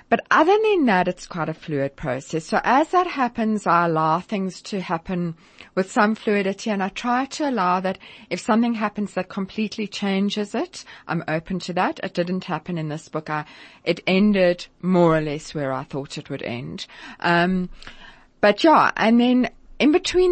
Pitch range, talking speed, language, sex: 165-230 Hz, 185 wpm, English, female